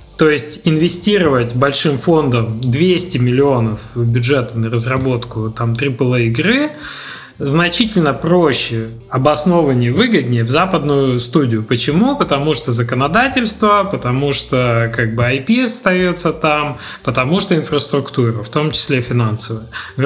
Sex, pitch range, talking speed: male, 120-155 Hz, 110 wpm